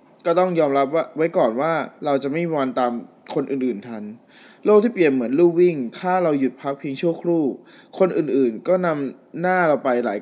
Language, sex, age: Thai, male, 20-39